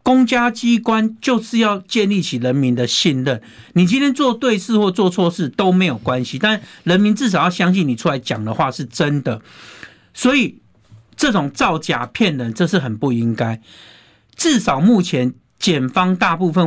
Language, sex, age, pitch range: Chinese, male, 50-69, 130-195 Hz